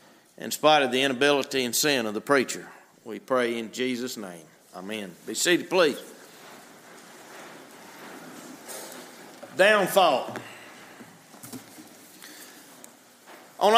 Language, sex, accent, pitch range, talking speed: English, male, American, 195-235 Hz, 90 wpm